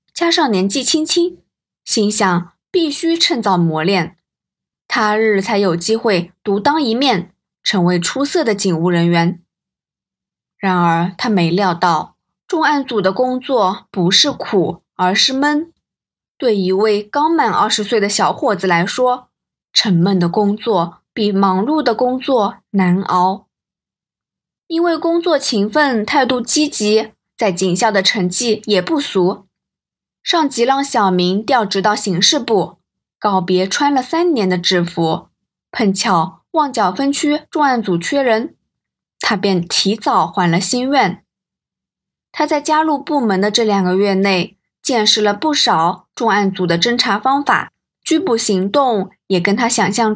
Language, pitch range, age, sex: Chinese, 185-275 Hz, 20-39, female